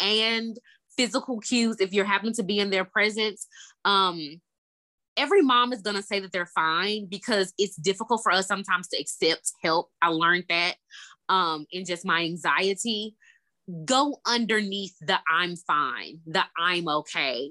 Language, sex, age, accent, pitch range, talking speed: English, female, 20-39, American, 175-225 Hz, 160 wpm